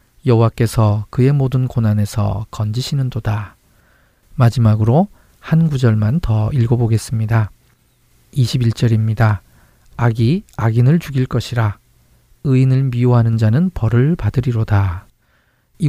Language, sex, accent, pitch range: Korean, male, native, 115-140 Hz